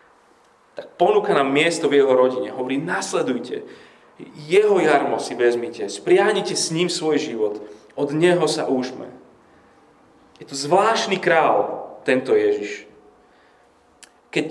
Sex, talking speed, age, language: male, 115 wpm, 30-49, Slovak